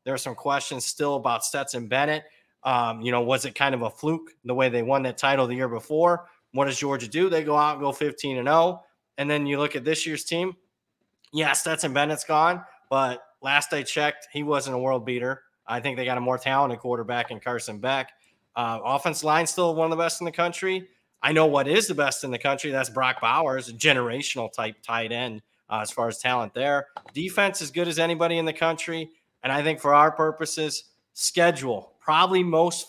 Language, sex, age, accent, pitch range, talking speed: English, male, 30-49, American, 120-155 Hz, 220 wpm